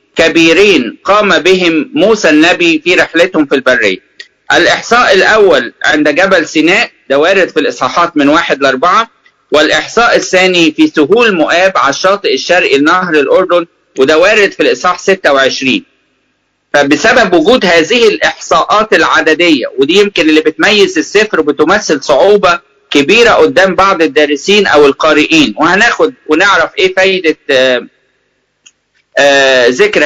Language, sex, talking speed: English, male, 115 wpm